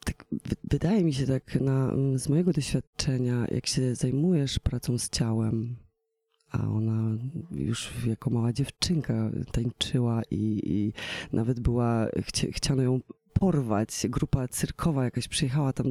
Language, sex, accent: Polish, female, native